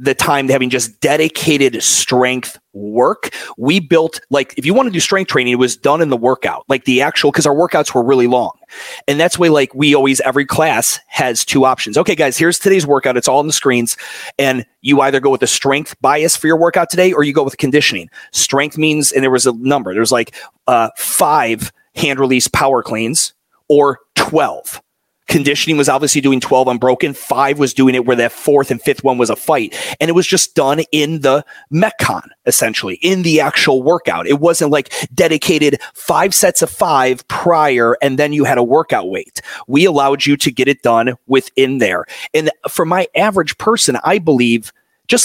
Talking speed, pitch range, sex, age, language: 205 wpm, 130-160 Hz, male, 30-49, English